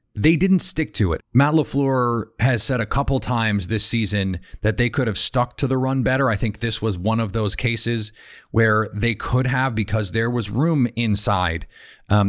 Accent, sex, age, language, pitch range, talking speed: American, male, 30-49, English, 105-130 Hz, 200 wpm